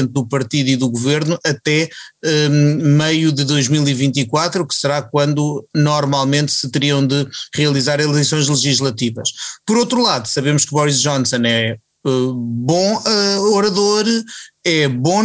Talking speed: 125 wpm